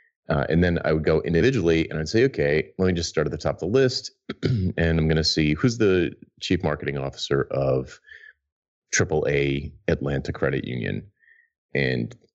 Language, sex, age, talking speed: English, male, 30-49, 180 wpm